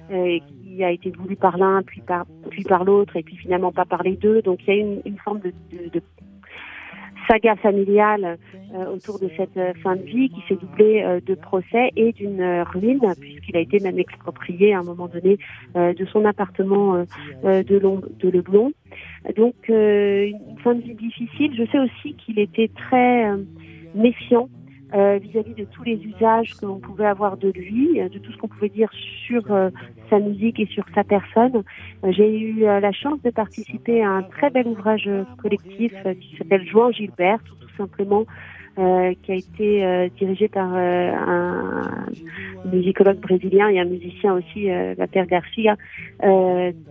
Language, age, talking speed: French, 40-59, 185 wpm